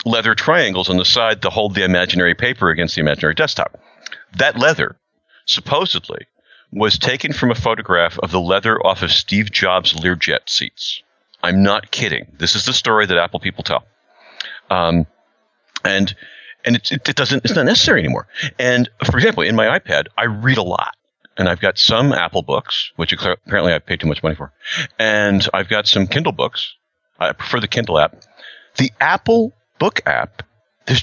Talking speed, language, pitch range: 180 wpm, English, 95-135 Hz